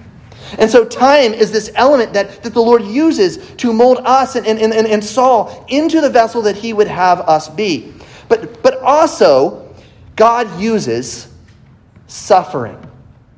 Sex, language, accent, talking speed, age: male, English, American, 155 wpm, 30-49